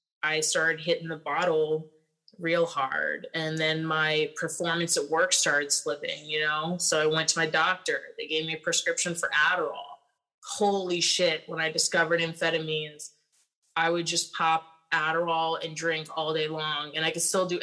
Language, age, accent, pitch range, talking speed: English, 20-39, American, 160-195 Hz, 175 wpm